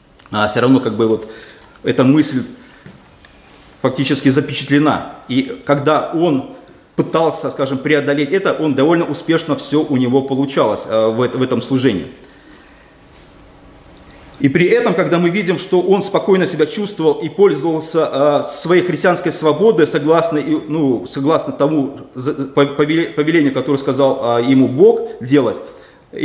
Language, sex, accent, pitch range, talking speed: Russian, male, native, 135-165 Hz, 120 wpm